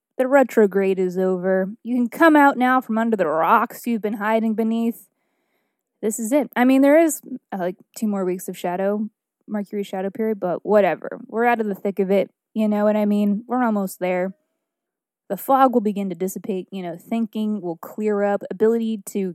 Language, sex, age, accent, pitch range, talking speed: English, female, 20-39, American, 195-240 Hz, 200 wpm